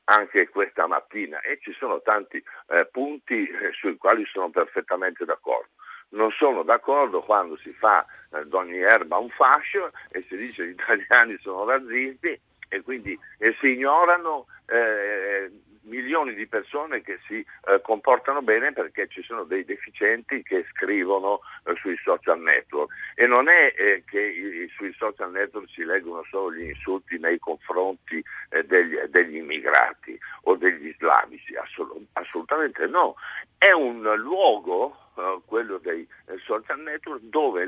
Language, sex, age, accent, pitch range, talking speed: Italian, male, 60-79, native, 270-455 Hz, 150 wpm